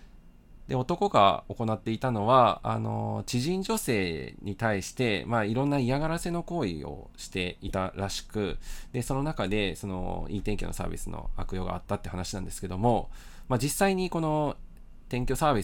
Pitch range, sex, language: 95-125 Hz, male, Japanese